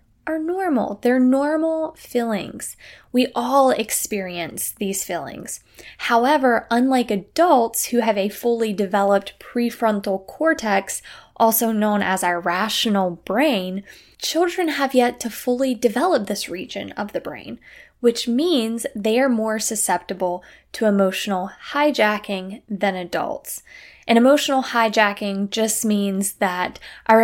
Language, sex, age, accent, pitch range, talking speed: English, female, 10-29, American, 195-250 Hz, 120 wpm